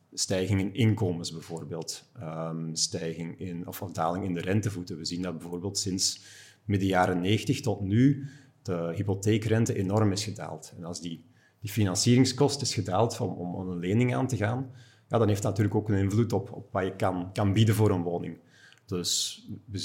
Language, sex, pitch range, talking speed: Dutch, male, 95-115 Hz, 185 wpm